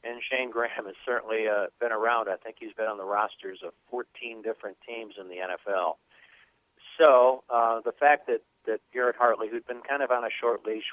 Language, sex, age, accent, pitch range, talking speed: English, male, 60-79, American, 110-165 Hz, 210 wpm